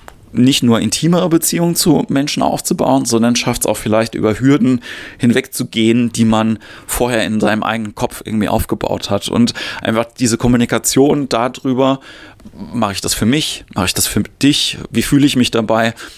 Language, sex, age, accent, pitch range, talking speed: German, male, 30-49, German, 105-125 Hz, 165 wpm